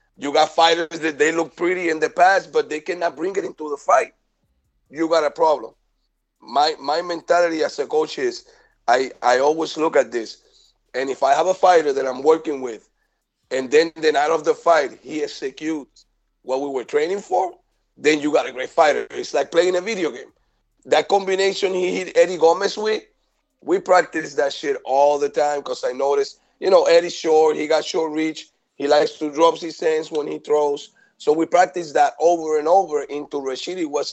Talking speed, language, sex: 200 wpm, English, male